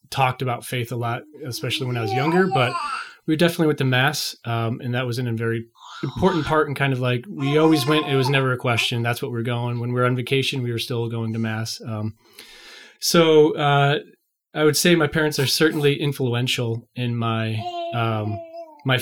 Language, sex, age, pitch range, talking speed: English, male, 30-49, 120-150 Hz, 210 wpm